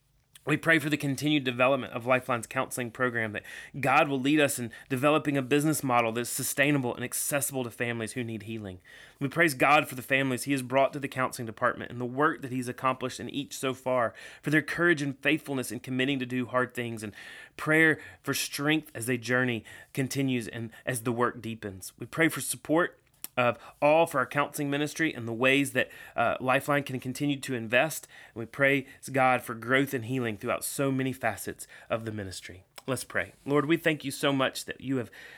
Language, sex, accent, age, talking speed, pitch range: English, male, American, 30-49, 210 wpm, 125-145 Hz